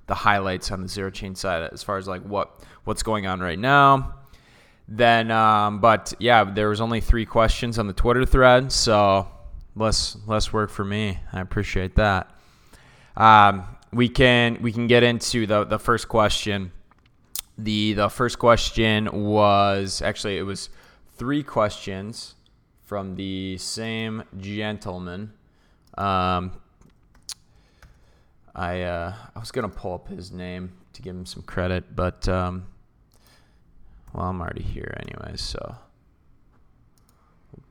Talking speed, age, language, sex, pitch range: 140 wpm, 20-39, English, male, 95-115 Hz